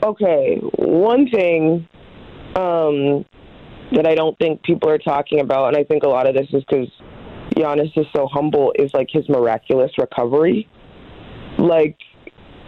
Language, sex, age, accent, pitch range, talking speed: English, female, 20-39, American, 140-170 Hz, 145 wpm